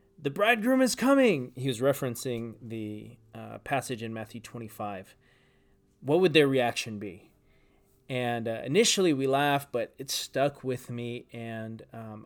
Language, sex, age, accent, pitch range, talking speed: English, male, 30-49, American, 110-135 Hz, 145 wpm